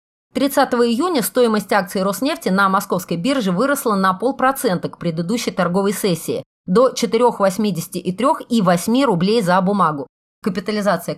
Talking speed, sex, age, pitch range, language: 130 wpm, female, 30-49, 180-245 Hz, Russian